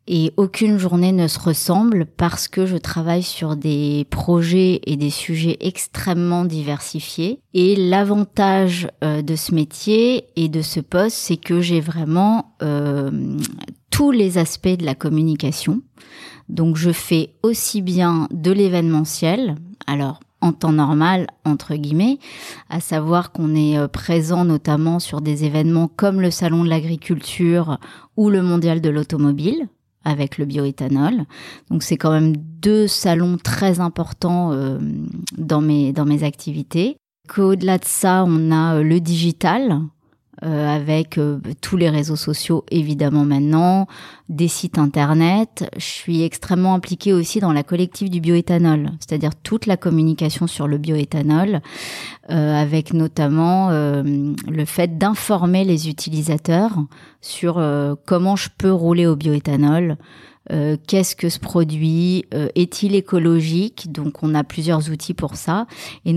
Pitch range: 150-180 Hz